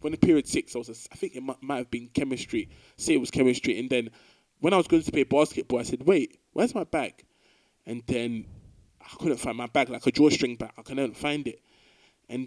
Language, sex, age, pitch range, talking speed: English, male, 20-39, 120-165 Hz, 230 wpm